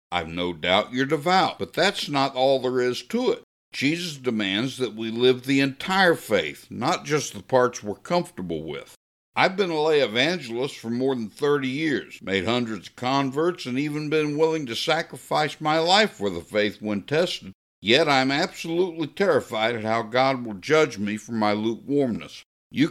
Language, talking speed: English, 180 wpm